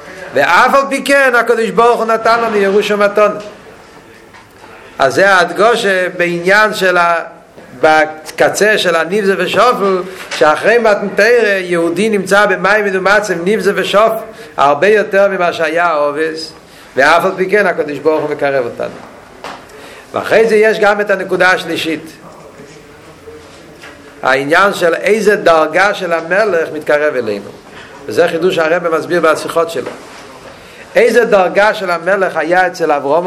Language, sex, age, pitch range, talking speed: Hebrew, male, 50-69, 155-200 Hz, 125 wpm